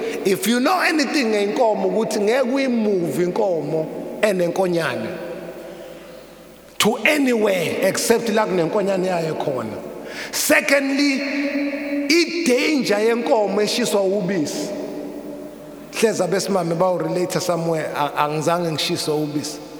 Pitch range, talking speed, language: 175-265 Hz, 105 wpm, English